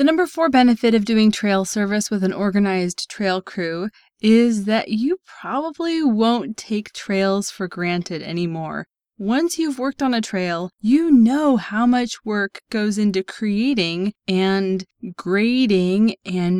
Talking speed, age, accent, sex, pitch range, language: 145 wpm, 20-39, American, female, 180-235 Hz, English